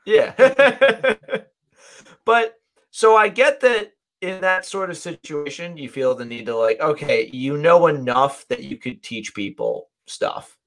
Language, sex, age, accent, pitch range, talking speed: English, male, 30-49, American, 125-180 Hz, 150 wpm